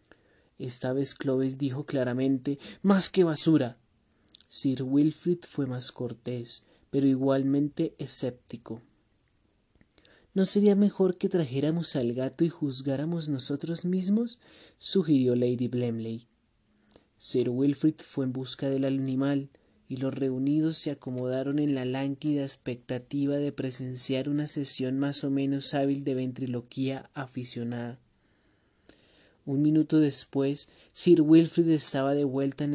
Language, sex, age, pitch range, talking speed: Spanish, male, 30-49, 125-150 Hz, 120 wpm